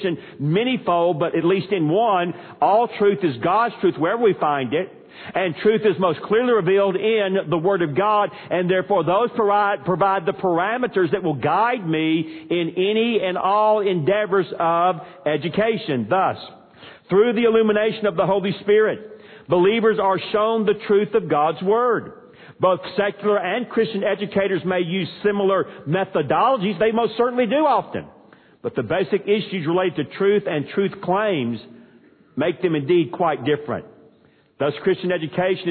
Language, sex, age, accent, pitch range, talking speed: English, male, 50-69, American, 175-205 Hz, 155 wpm